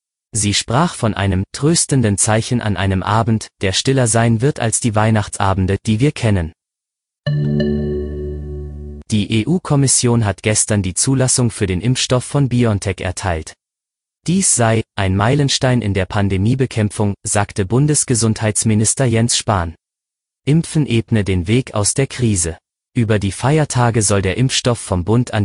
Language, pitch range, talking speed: German, 100-120 Hz, 135 wpm